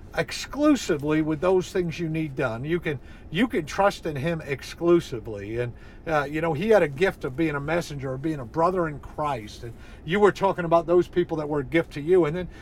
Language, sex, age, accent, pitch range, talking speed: English, male, 50-69, American, 140-185 Hz, 230 wpm